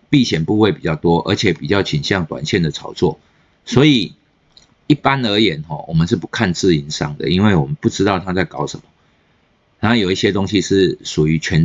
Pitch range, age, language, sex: 80-115 Hz, 50-69, Chinese, male